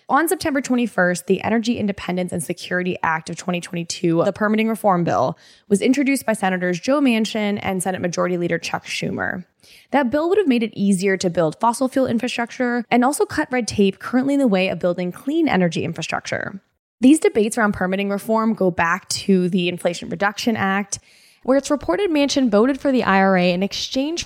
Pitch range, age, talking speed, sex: 190-260 Hz, 10-29, 185 wpm, female